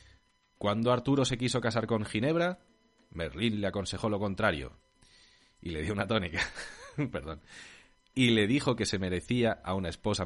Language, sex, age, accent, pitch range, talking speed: Spanish, male, 30-49, Spanish, 90-120 Hz, 160 wpm